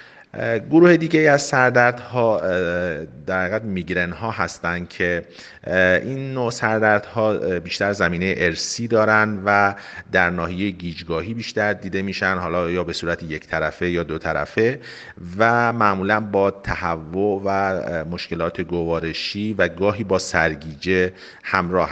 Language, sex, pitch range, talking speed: Persian, male, 85-110 Hz, 120 wpm